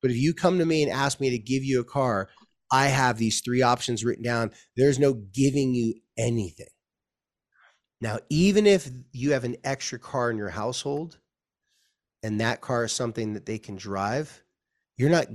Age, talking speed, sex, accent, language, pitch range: 30-49, 190 wpm, male, American, English, 115-145 Hz